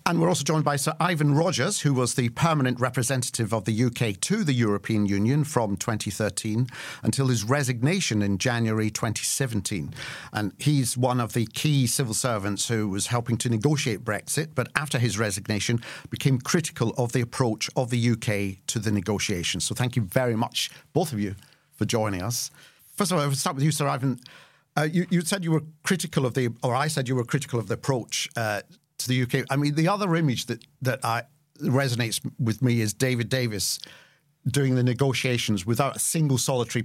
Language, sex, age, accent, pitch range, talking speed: English, male, 50-69, British, 115-140 Hz, 195 wpm